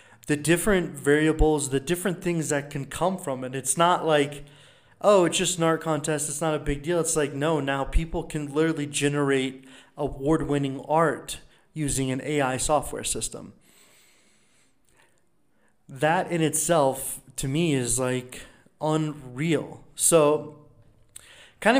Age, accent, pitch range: 30-49, American, 135-165 Hz